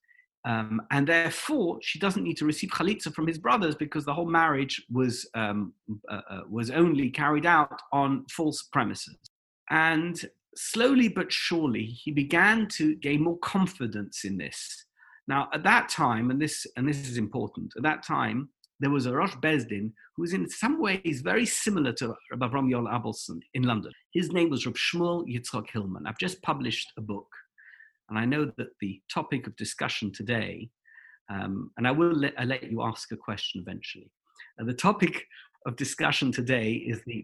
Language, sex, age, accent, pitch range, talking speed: English, male, 50-69, British, 120-165 Hz, 175 wpm